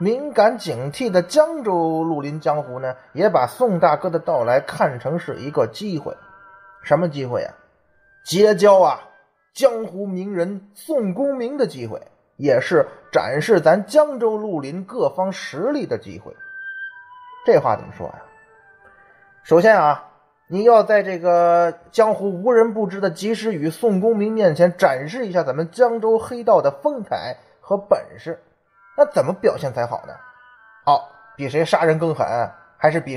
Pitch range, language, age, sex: 165-240 Hz, Chinese, 30-49, male